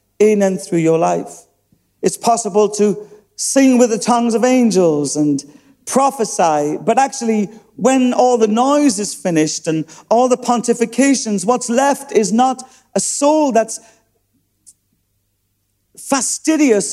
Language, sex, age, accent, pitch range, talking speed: English, male, 50-69, British, 145-215 Hz, 130 wpm